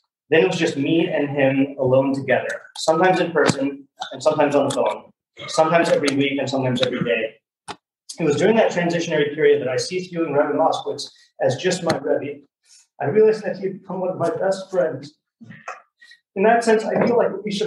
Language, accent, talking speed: English, American, 195 wpm